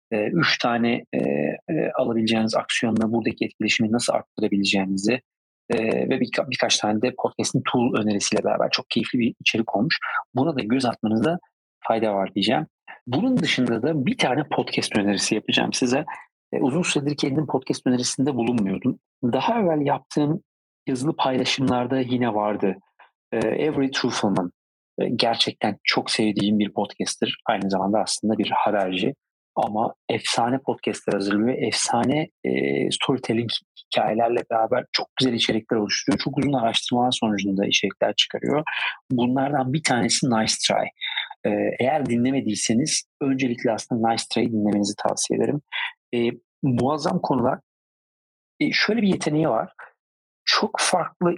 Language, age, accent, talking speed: Turkish, 40-59, native, 130 wpm